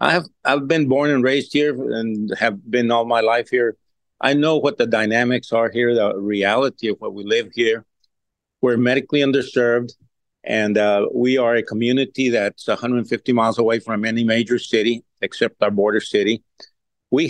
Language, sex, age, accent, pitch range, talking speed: English, male, 50-69, American, 115-130 Hz, 175 wpm